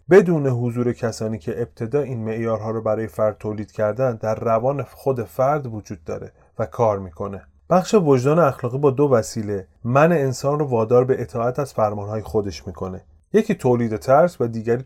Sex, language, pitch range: male, Persian, 110-150 Hz